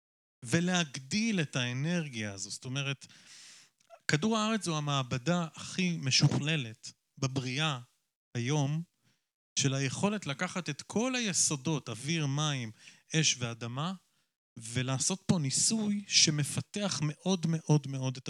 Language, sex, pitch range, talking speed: Hebrew, male, 130-175 Hz, 105 wpm